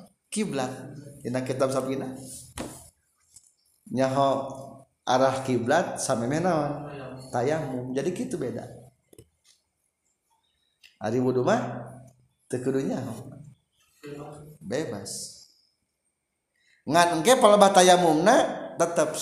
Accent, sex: native, male